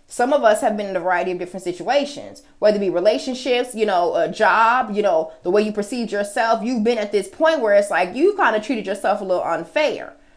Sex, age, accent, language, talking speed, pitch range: female, 20-39, American, English, 245 wpm, 210-300 Hz